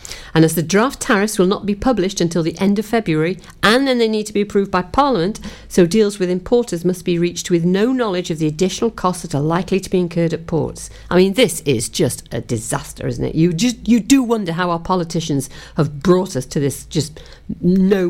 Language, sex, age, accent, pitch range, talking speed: English, female, 50-69, British, 155-200 Hz, 230 wpm